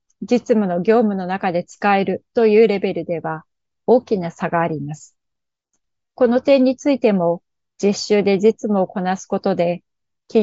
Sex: female